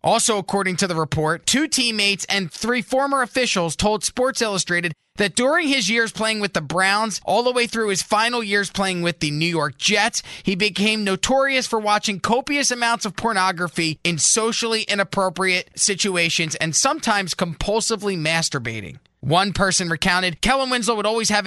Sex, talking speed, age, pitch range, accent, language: male, 170 wpm, 20-39, 175-225 Hz, American, English